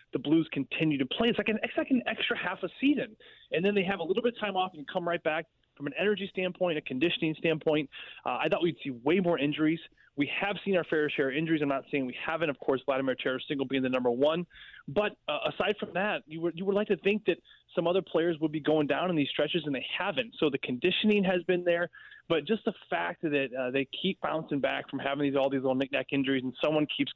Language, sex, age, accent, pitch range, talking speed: English, male, 20-39, American, 135-170 Hz, 265 wpm